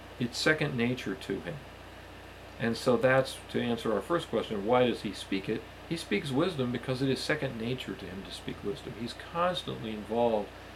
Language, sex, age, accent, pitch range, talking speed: English, male, 50-69, American, 105-135 Hz, 190 wpm